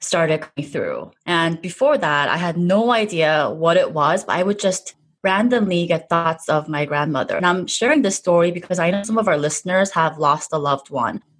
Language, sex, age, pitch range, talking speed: English, female, 20-39, 155-205 Hz, 210 wpm